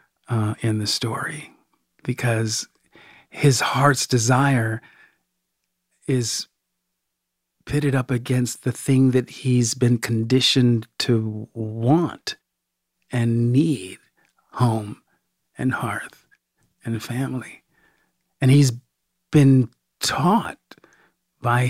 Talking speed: 90 wpm